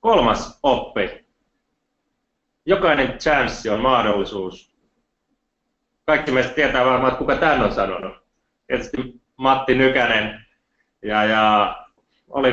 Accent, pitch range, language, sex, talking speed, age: native, 110-130 Hz, Finnish, male, 100 wpm, 30-49